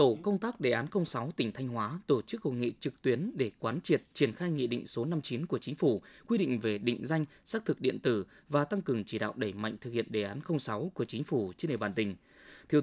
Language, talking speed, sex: Vietnamese, 260 wpm, male